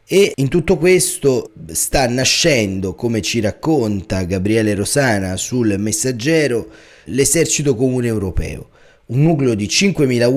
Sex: male